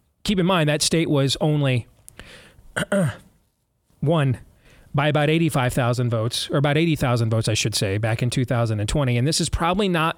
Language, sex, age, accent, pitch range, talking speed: English, male, 40-59, American, 125-160 Hz, 160 wpm